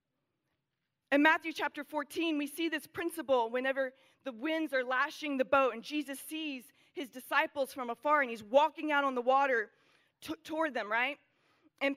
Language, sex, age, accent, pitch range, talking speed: English, female, 30-49, American, 255-310 Hz, 170 wpm